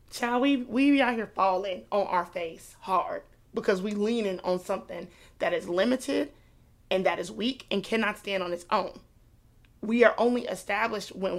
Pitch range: 195-250 Hz